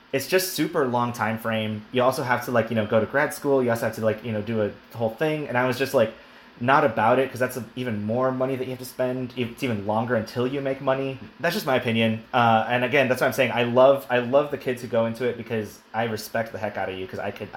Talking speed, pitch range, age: 295 wpm, 110-130 Hz, 30-49